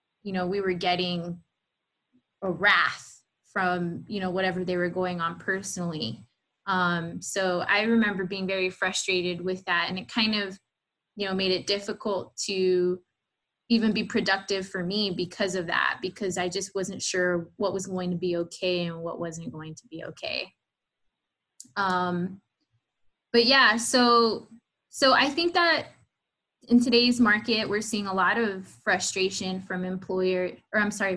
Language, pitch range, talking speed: English, 185-215 Hz, 160 wpm